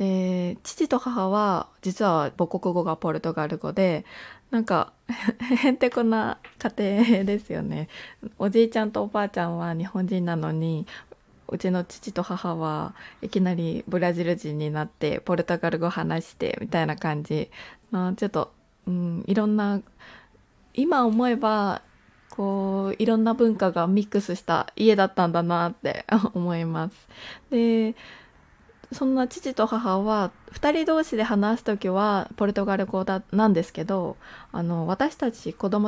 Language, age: Japanese, 20-39